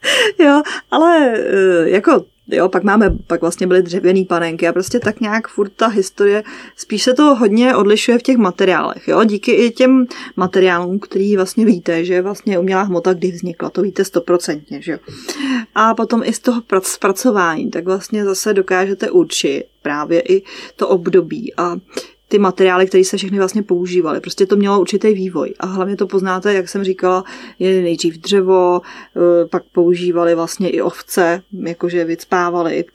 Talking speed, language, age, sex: 165 wpm, Czech, 20-39, female